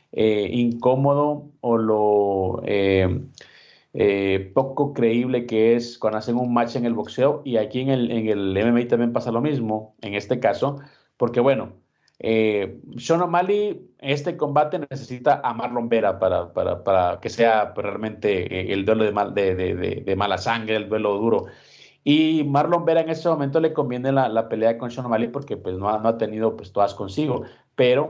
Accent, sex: Mexican, male